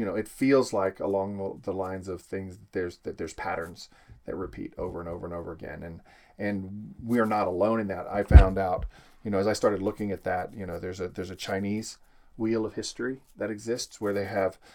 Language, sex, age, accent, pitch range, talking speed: English, male, 40-59, American, 95-105 Hz, 230 wpm